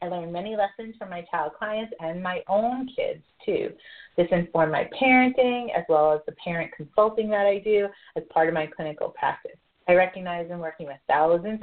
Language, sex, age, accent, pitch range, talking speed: English, female, 30-49, American, 170-230 Hz, 195 wpm